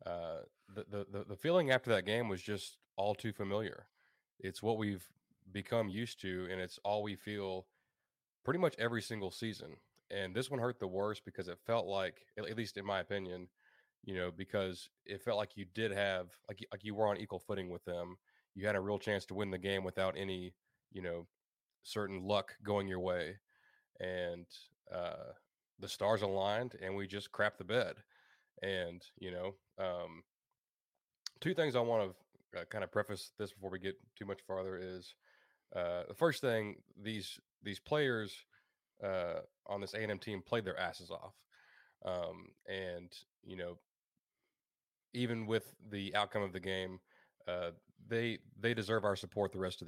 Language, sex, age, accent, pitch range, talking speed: English, male, 30-49, American, 95-110 Hz, 180 wpm